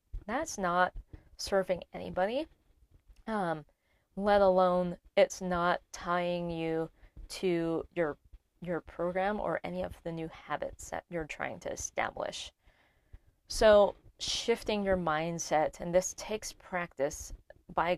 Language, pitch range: English, 165-205 Hz